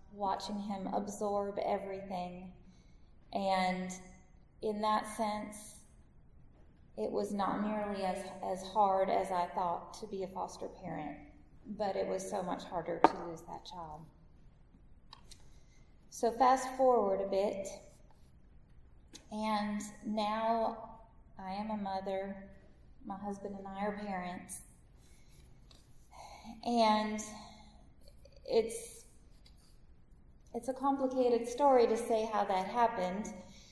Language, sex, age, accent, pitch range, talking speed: English, female, 20-39, American, 195-235 Hz, 110 wpm